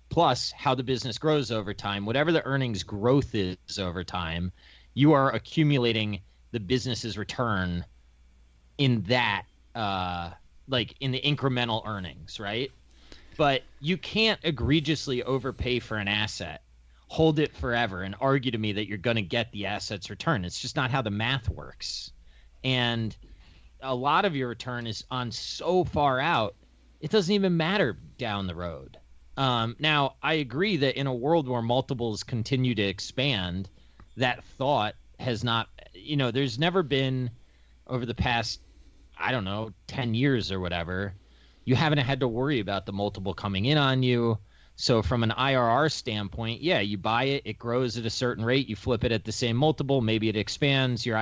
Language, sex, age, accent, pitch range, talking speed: English, male, 30-49, American, 95-130 Hz, 170 wpm